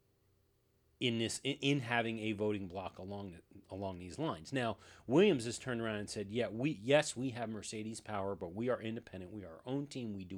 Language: English